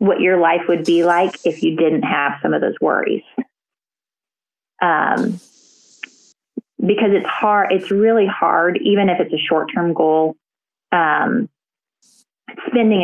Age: 20-39